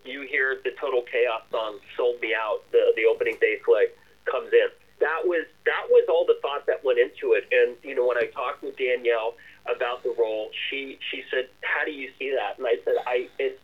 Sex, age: male, 40-59